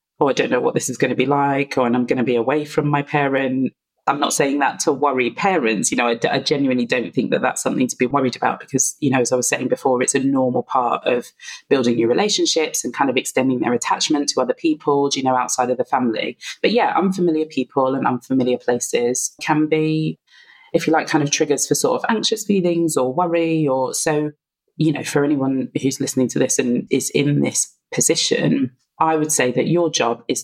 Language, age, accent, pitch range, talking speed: English, 20-39, British, 130-160 Hz, 230 wpm